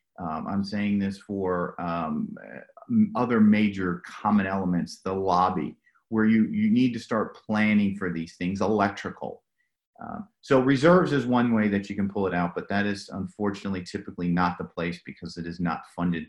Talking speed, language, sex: 175 wpm, English, male